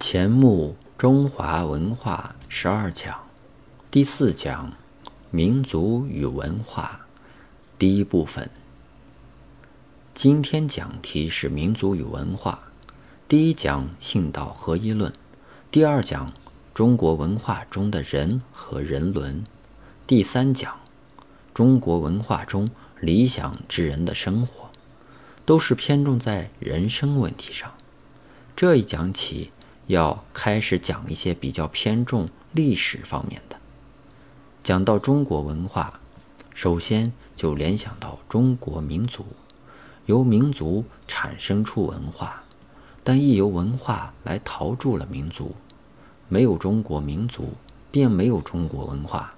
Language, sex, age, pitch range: Chinese, male, 50-69, 95-135 Hz